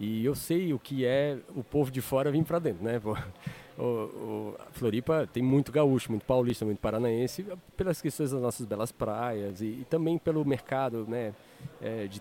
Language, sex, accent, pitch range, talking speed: Portuguese, male, Brazilian, 110-140 Hz, 180 wpm